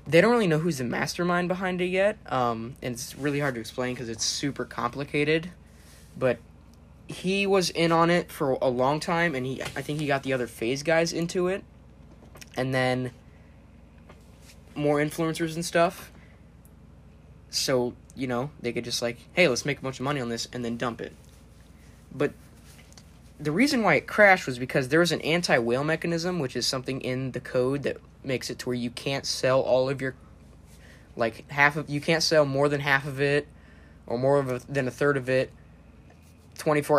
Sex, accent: male, American